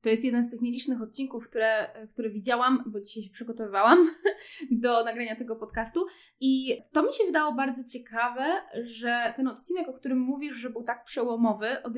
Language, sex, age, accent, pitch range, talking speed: Polish, female, 20-39, native, 220-260 Hz, 180 wpm